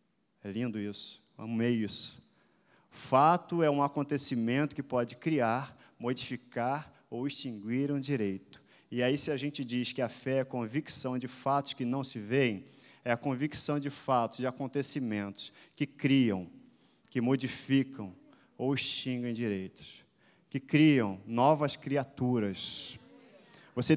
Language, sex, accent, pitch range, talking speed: Portuguese, male, Brazilian, 130-160 Hz, 135 wpm